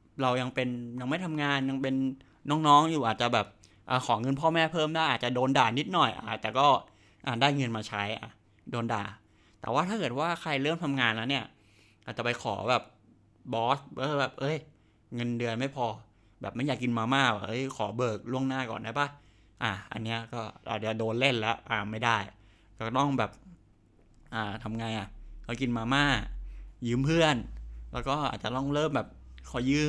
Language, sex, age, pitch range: English, male, 20-39, 110-135 Hz